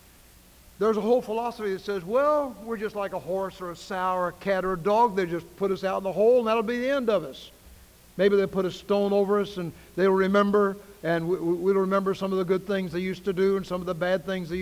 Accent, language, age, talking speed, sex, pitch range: American, English, 60-79, 265 wpm, male, 145-190 Hz